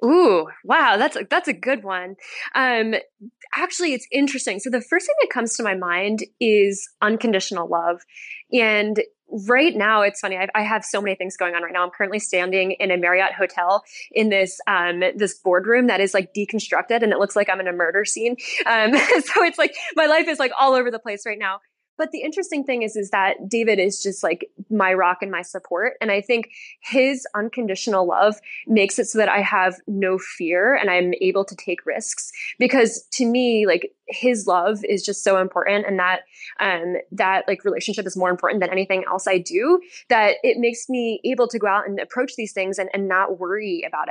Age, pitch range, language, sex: 20-39, 190-240 Hz, English, female